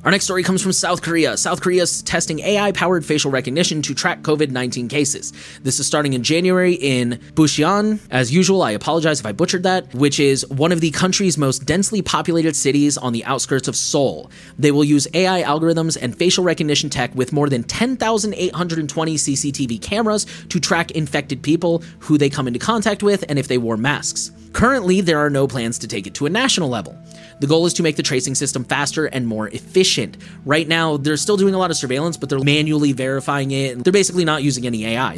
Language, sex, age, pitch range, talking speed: English, male, 30-49, 135-180 Hz, 205 wpm